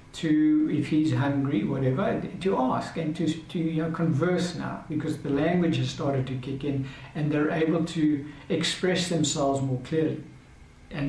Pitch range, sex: 145-170 Hz, male